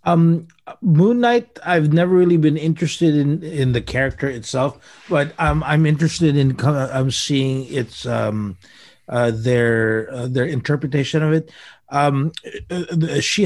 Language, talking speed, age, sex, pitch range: English, 150 wpm, 30-49, male, 125-150 Hz